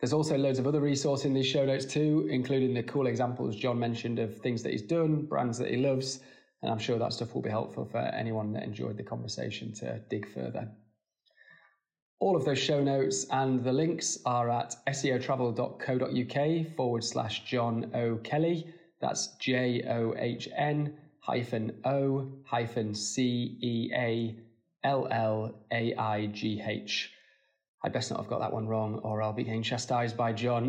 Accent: British